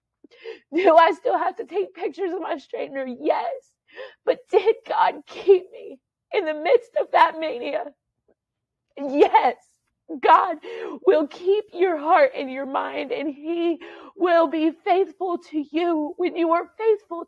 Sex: female